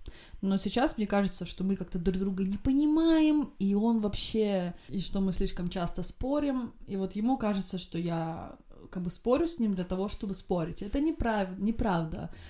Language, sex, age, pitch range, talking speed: Russian, female, 20-39, 185-245 Hz, 180 wpm